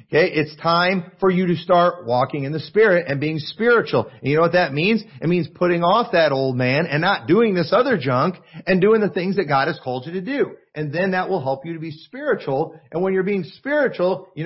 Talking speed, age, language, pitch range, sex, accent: 245 wpm, 40-59, English, 150-195 Hz, male, American